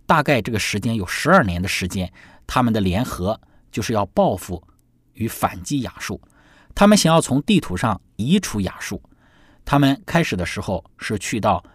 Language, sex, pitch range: Chinese, male, 95-150 Hz